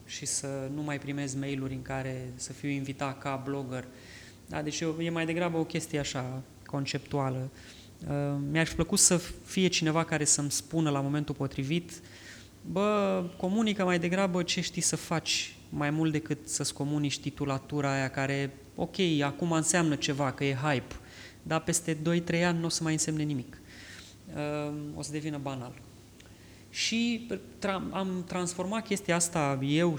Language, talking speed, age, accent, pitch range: Romanian, 160 wpm, 20-39, native, 130-160 Hz